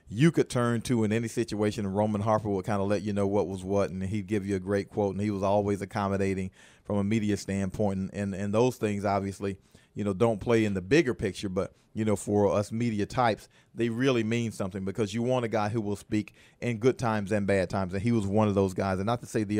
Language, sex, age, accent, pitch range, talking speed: English, male, 40-59, American, 100-115 Hz, 265 wpm